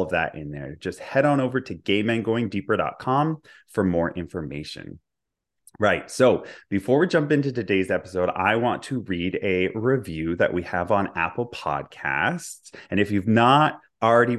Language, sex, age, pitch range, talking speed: English, male, 30-49, 90-125 Hz, 160 wpm